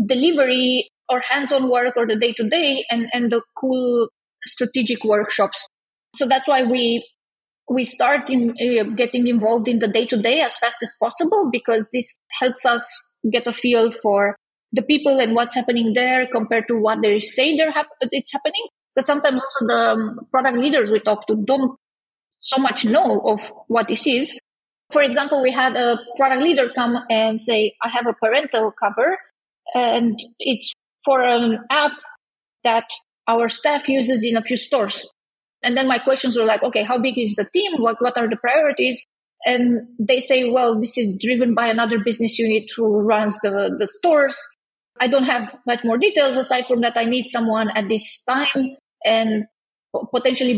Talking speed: 180 wpm